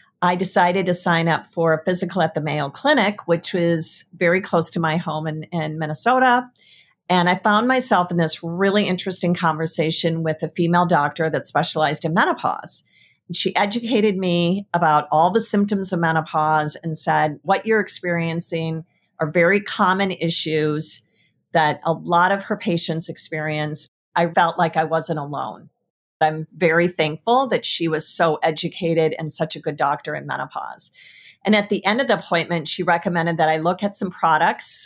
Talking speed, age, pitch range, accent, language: 170 wpm, 50-69, 160-185 Hz, American, English